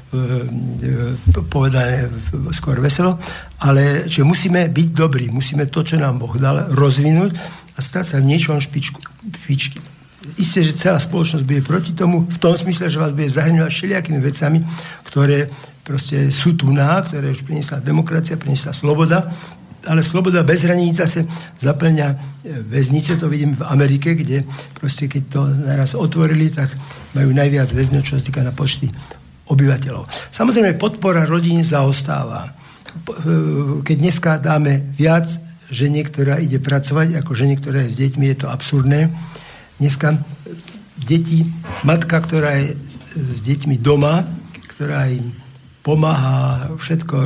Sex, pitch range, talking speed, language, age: male, 140-160 Hz, 135 wpm, Slovak, 60-79